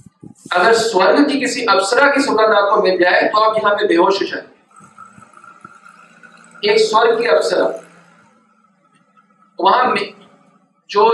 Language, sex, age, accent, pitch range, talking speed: Hindi, male, 50-69, native, 205-275 Hz, 120 wpm